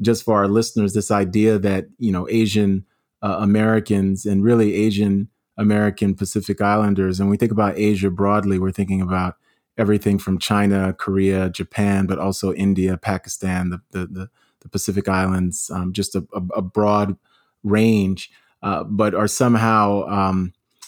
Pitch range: 95-110 Hz